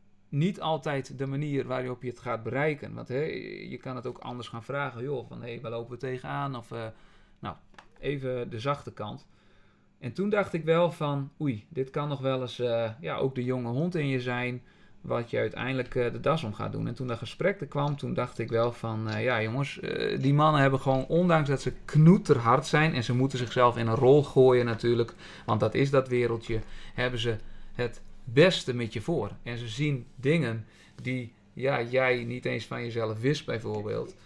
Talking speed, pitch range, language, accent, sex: 200 wpm, 115-140 Hz, Dutch, Dutch, male